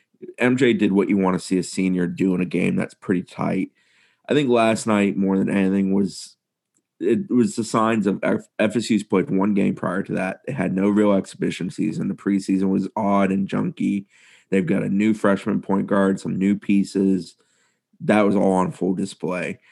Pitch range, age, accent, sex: 95-100 Hz, 30-49, American, male